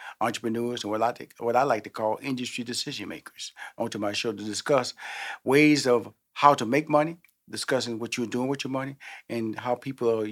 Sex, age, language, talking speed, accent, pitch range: male, 40-59, English, 205 wpm, American, 120-155 Hz